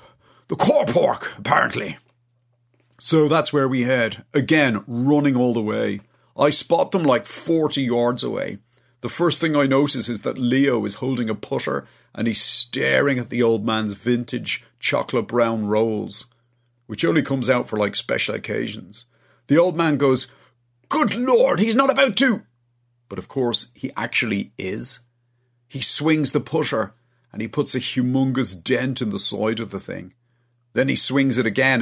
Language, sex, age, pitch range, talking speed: English, male, 40-59, 115-135 Hz, 170 wpm